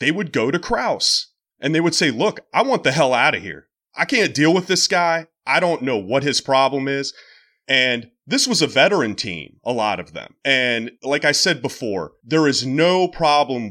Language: English